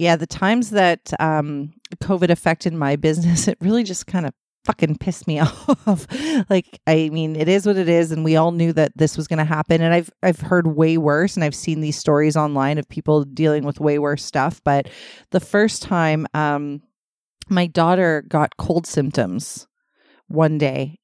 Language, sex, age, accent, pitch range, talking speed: English, female, 40-59, American, 150-185 Hz, 190 wpm